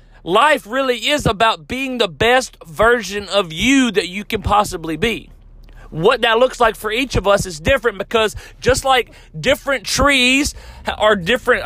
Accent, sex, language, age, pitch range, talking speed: American, male, English, 40-59, 210-260 Hz, 165 wpm